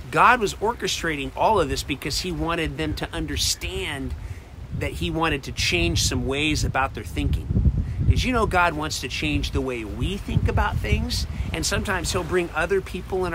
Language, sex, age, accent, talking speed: English, male, 40-59, American, 190 wpm